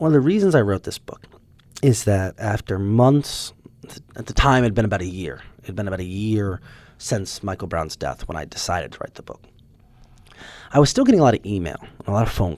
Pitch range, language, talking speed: 105-160 Hz, English, 250 wpm